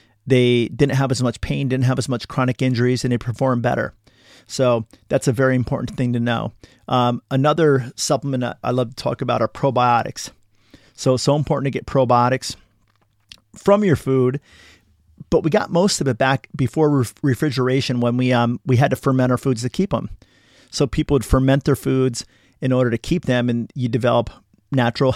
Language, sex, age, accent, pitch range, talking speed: English, male, 40-59, American, 120-140 Hz, 195 wpm